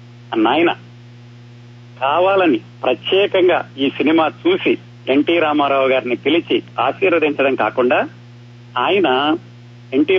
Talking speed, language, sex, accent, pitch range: 90 wpm, Telugu, male, native, 120-160 Hz